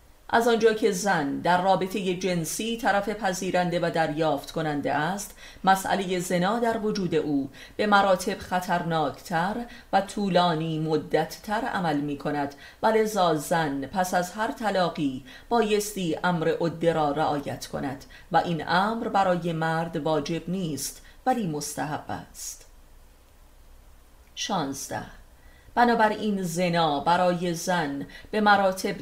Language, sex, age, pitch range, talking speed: Persian, female, 30-49, 150-195 Hz, 115 wpm